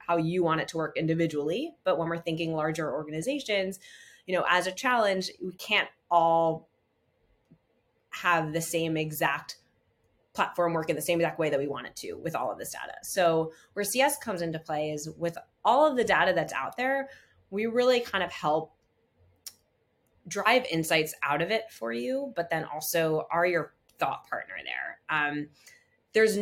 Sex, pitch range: female, 150-185 Hz